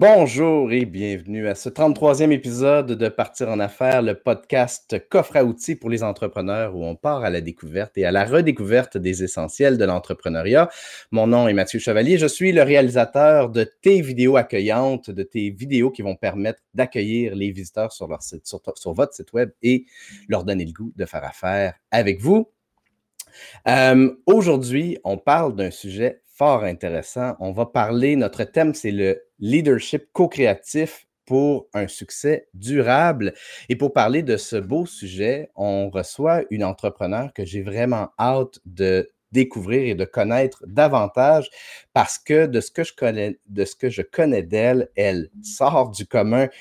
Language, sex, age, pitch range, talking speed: French, male, 30-49, 100-135 Hz, 170 wpm